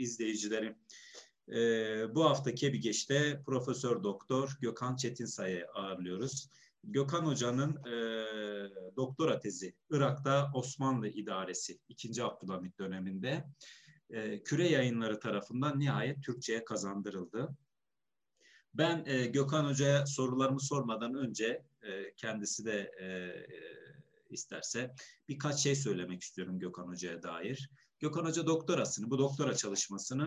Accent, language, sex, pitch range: native, Turkish, male, 110-140 Hz